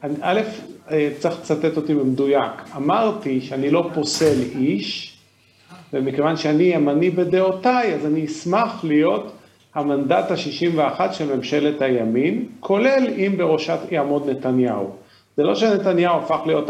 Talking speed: 120 wpm